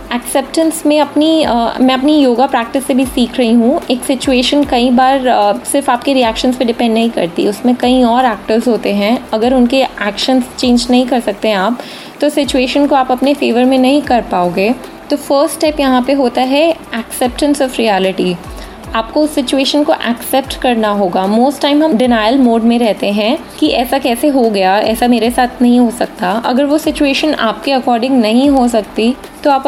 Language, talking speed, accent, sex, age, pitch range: Hindi, 195 wpm, native, female, 20-39, 230-275 Hz